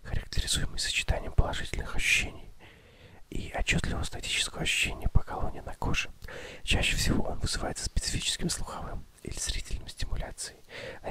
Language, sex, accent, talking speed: Russian, male, native, 120 wpm